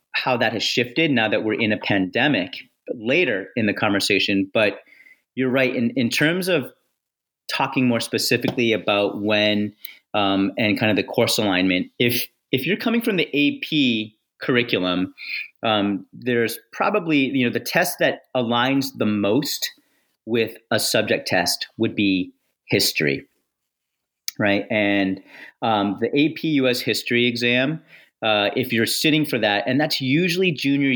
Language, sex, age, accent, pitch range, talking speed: English, male, 30-49, American, 110-135 Hz, 150 wpm